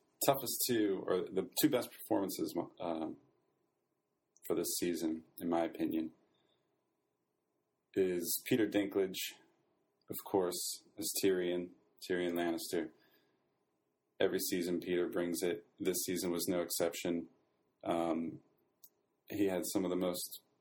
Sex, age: male, 30-49